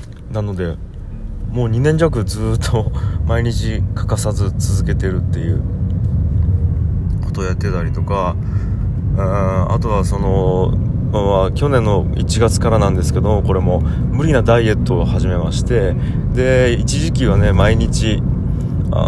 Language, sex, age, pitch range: Japanese, male, 20-39, 95-120 Hz